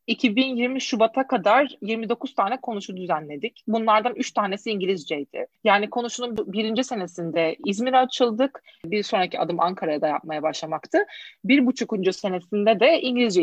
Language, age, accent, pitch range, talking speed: Turkish, 30-49, native, 185-255 Hz, 125 wpm